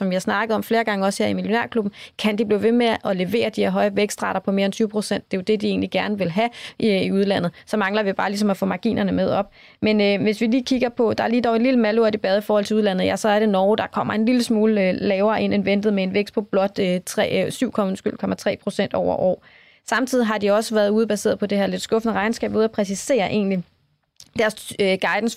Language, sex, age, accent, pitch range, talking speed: Danish, female, 20-39, native, 195-225 Hz, 270 wpm